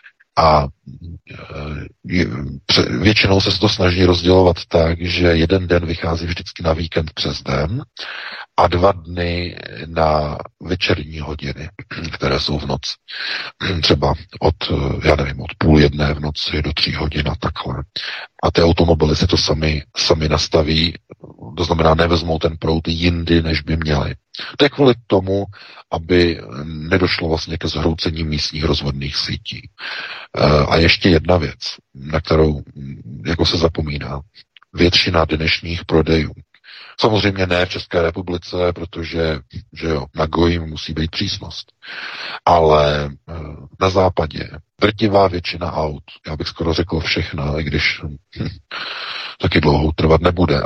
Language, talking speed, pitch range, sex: Czech, 135 wpm, 75-90 Hz, male